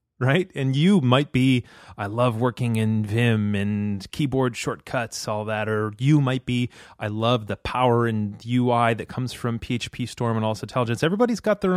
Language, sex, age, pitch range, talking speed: English, male, 30-49, 105-130 Hz, 185 wpm